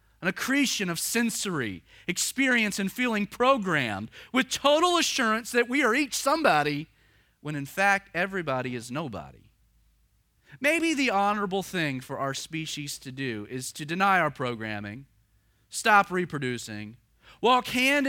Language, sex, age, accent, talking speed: English, male, 30-49, American, 135 wpm